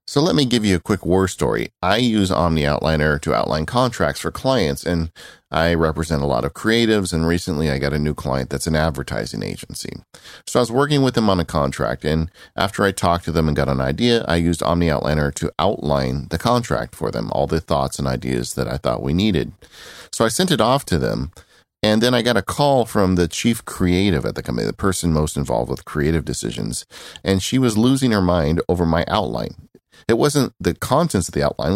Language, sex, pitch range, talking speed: English, male, 80-100 Hz, 225 wpm